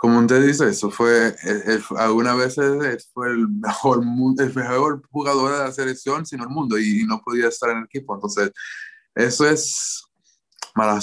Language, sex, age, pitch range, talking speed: English, male, 20-39, 110-135 Hz, 170 wpm